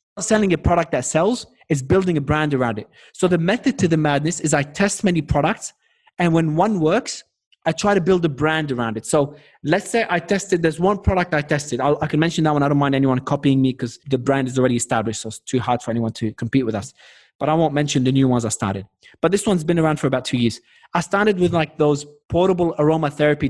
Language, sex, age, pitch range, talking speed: English, male, 20-39, 145-185 Hz, 245 wpm